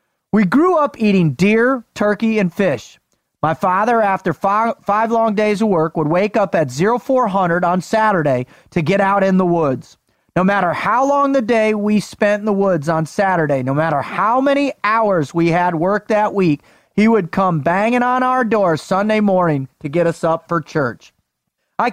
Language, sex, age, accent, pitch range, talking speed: English, male, 30-49, American, 165-215 Hz, 190 wpm